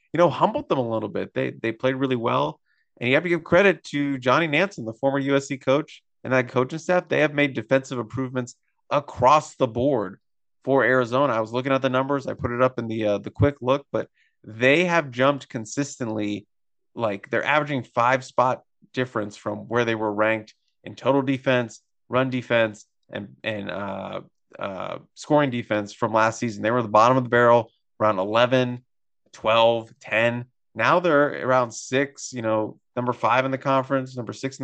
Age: 30-49